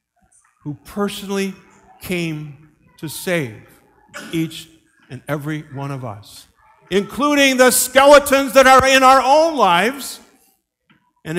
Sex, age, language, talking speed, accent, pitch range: male, 50-69, English, 110 wpm, American, 155-230 Hz